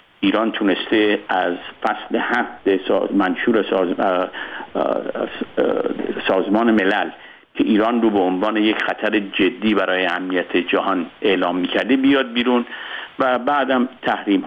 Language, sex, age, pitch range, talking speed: Persian, male, 50-69, 100-145 Hz, 110 wpm